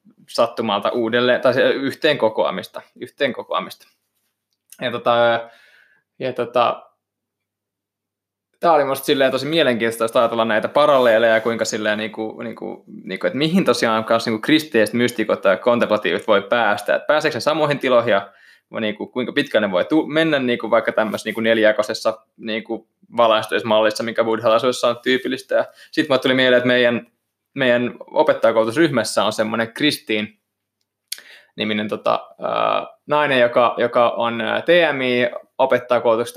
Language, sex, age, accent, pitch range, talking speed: Finnish, male, 20-39, native, 110-145 Hz, 125 wpm